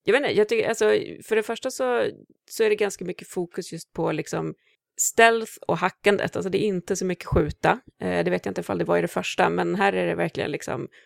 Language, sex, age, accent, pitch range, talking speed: English, female, 30-49, Swedish, 160-200 Hz, 250 wpm